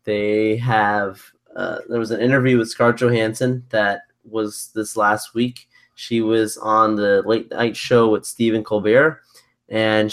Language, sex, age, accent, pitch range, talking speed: English, male, 20-39, American, 110-155 Hz, 155 wpm